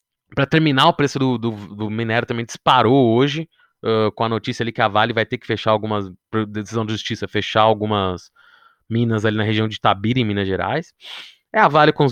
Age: 20-39